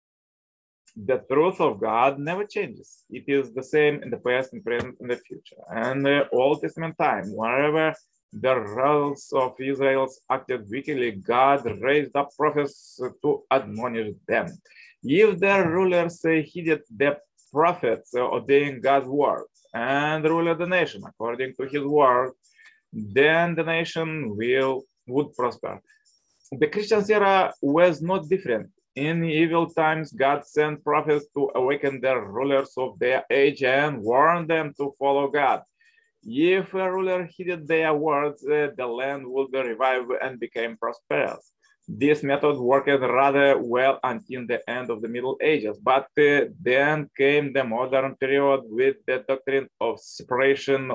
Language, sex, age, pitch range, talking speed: English, male, 30-49, 135-165 Hz, 150 wpm